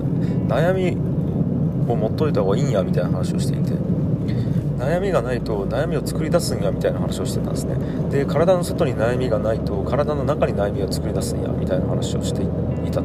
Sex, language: male, Japanese